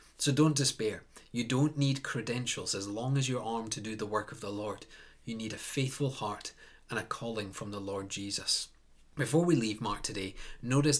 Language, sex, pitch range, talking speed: English, male, 105-130 Hz, 200 wpm